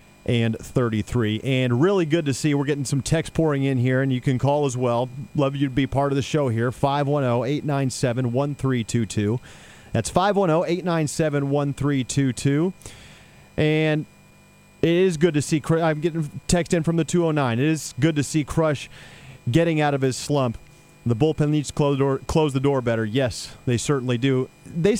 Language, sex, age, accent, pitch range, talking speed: English, male, 40-59, American, 120-150 Hz, 175 wpm